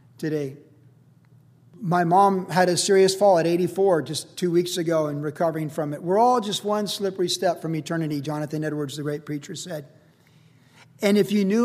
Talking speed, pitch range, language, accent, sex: 180 wpm, 140-185 Hz, English, American, male